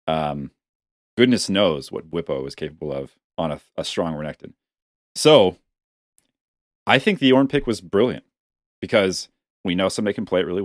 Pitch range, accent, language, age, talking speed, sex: 80-110 Hz, American, English, 30-49, 165 wpm, male